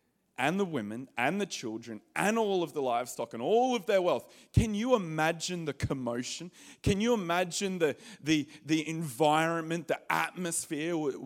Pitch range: 155-190 Hz